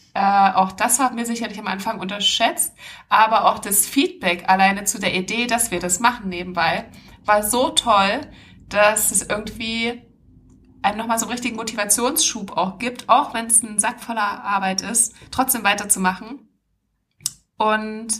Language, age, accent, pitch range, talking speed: German, 20-39, German, 195-235 Hz, 150 wpm